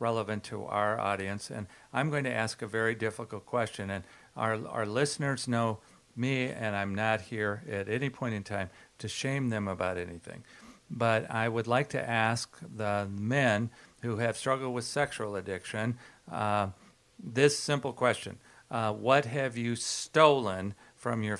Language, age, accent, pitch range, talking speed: English, 50-69, American, 105-130 Hz, 165 wpm